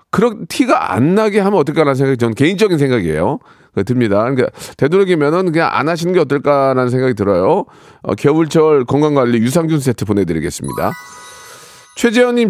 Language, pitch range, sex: Korean, 120-175 Hz, male